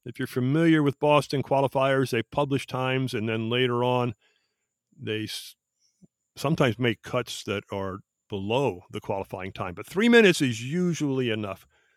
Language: English